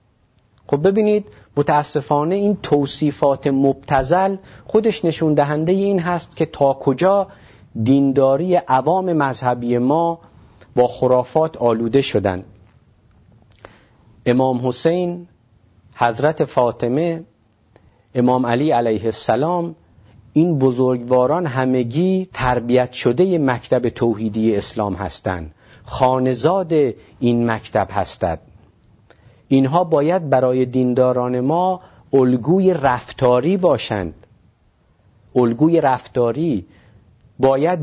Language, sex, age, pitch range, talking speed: Persian, male, 50-69, 115-155 Hz, 85 wpm